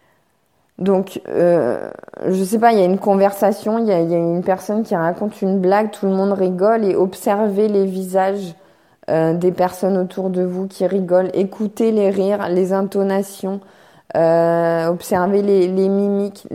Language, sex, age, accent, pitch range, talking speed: French, female, 20-39, French, 170-200 Hz, 170 wpm